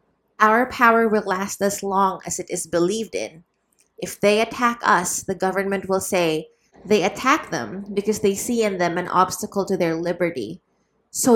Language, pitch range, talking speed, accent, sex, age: English, 195-240 Hz, 175 wpm, Filipino, female, 20-39